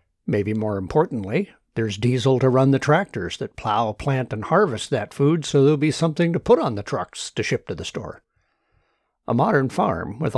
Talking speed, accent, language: 195 wpm, American, English